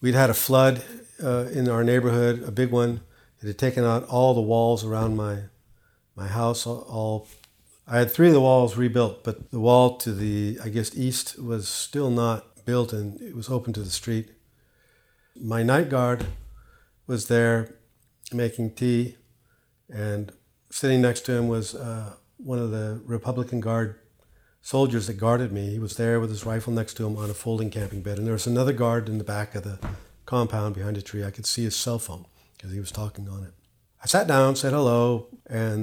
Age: 50-69